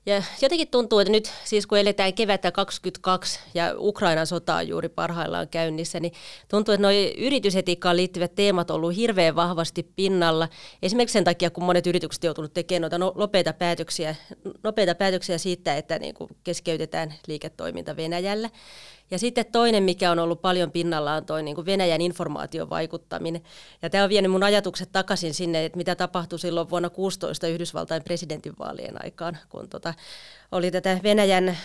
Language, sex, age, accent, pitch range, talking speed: Finnish, female, 30-49, native, 170-200 Hz, 155 wpm